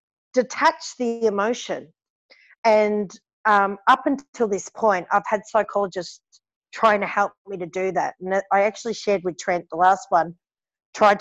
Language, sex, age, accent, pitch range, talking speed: English, female, 40-59, Australian, 170-215 Hz, 155 wpm